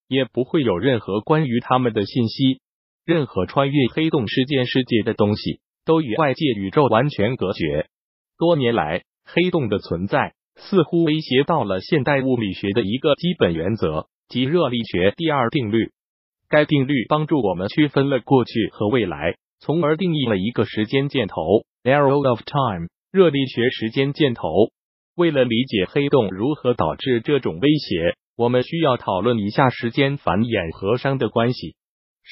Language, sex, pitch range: Chinese, male, 115-150 Hz